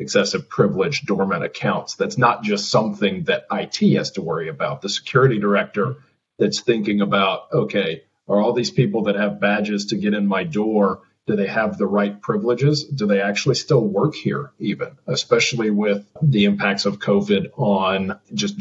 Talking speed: 175 wpm